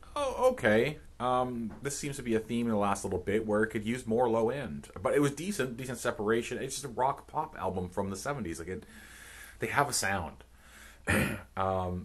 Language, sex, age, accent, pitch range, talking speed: English, male, 30-49, American, 90-115 Hz, 215 wpm